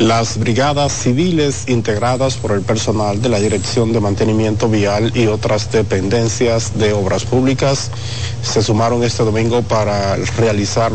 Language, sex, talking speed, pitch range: Spanish, male, 135 wpm, 105-120 Hz